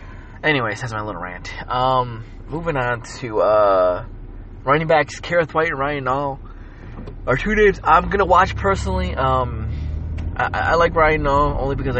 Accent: American